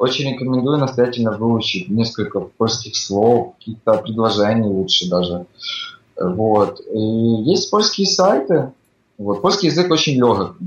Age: 20-39